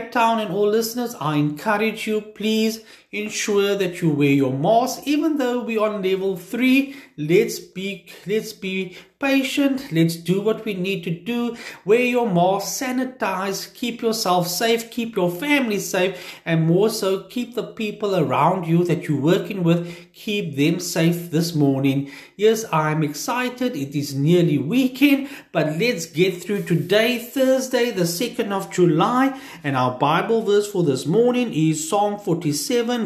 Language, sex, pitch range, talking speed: English, male, 155-220 Hz, 160 wpm